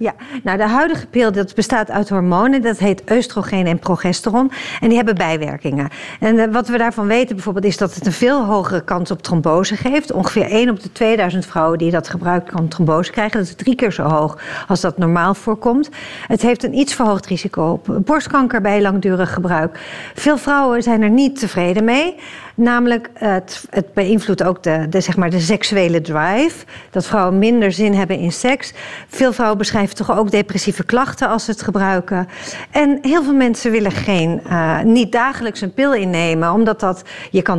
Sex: female